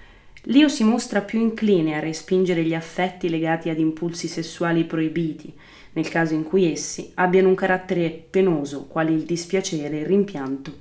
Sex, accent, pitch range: female, native, 155-190 Hz